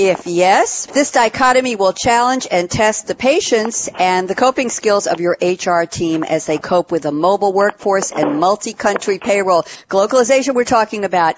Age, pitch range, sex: 50-69, 180-235 Hz, female